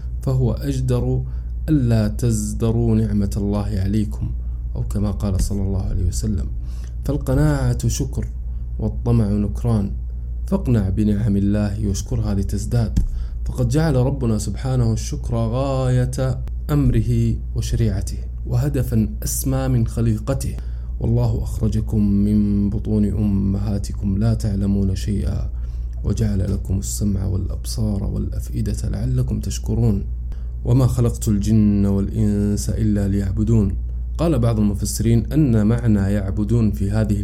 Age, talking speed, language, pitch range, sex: 20-39, 105 wpm, Arabic, 95-110 Hz, male